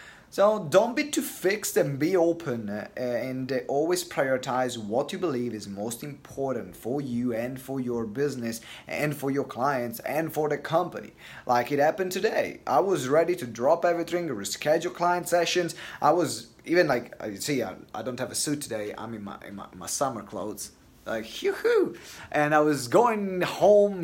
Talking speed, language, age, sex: 175 wpm, English, 30-49, male